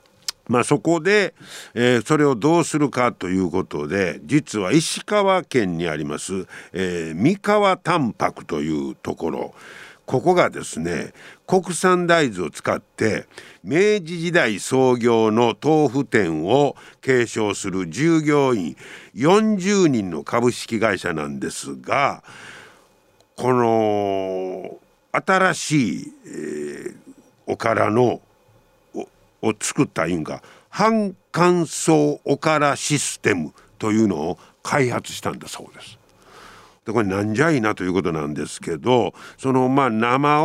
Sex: male